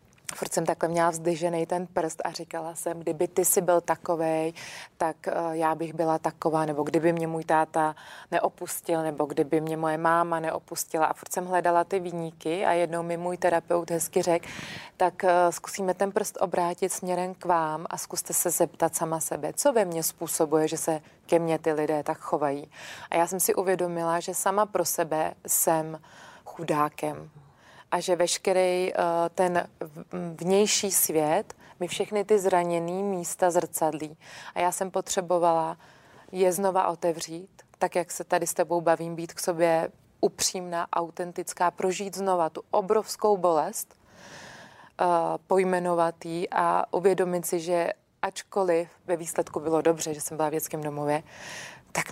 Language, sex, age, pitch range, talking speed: Czech, female, 30-49, 160-185 Hz, 155 wpm